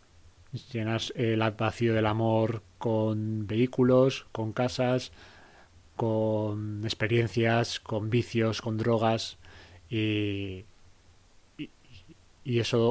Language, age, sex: Spanish, 30-49, male